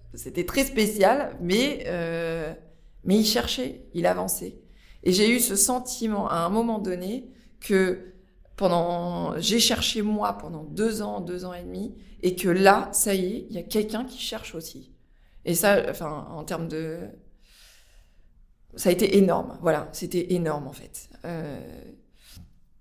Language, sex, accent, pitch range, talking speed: French, female, French, 165-210 Hz, 160 wpm